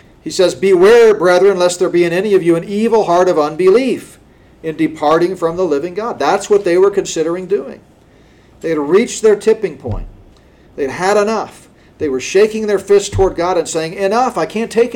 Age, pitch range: 50-69, 130-195 Hz